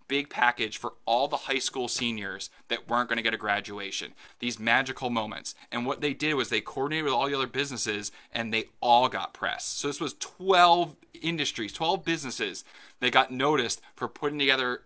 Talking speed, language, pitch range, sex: 195 wpm, English, 120-155 Hz, male